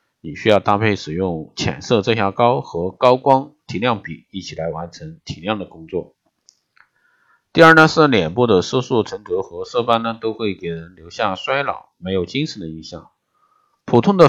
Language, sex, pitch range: Chinese, male, 95-135 Hz